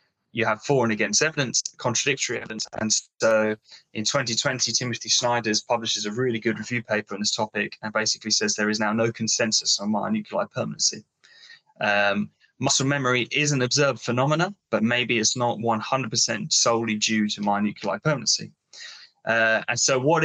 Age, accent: 10-29, British